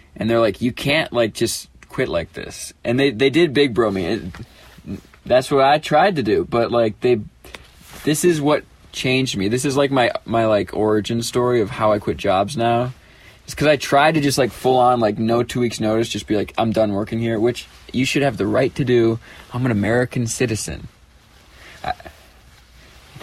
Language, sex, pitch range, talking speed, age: English, male, 115-140 Hz, 205 wpm, 20-39